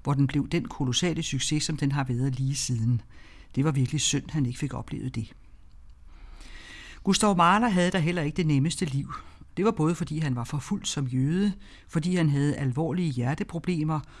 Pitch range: 135-180 Hz